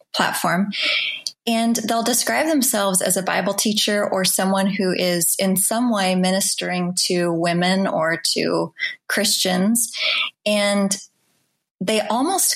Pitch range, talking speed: 185-230 Hz, 120 wpm